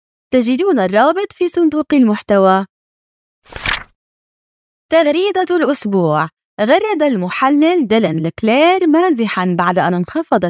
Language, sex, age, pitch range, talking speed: Arabic, female, 20-39, 190-310 Hz, 85 wpm